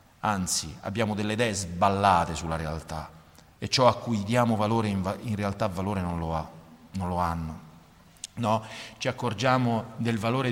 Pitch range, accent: 105-135 Hz, native